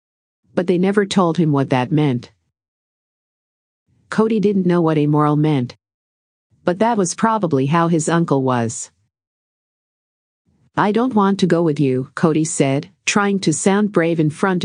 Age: 50-69